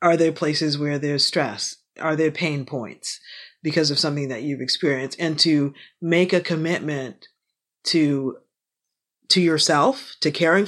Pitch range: 150-185 Hz